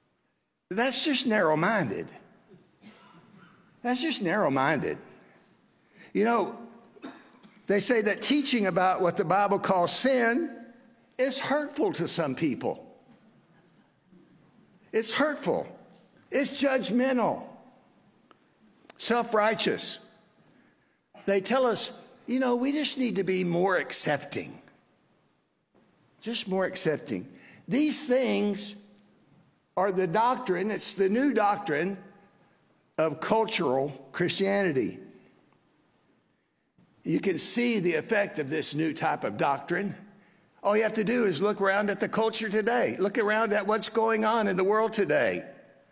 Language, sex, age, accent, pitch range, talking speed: English, male, 60-79, American, 190-245 Hz, 115 wpm